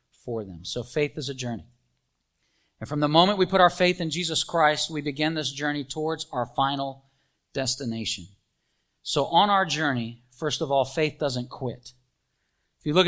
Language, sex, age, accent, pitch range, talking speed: English, male, 40-59, American, 125-160 Hz, 180 wpm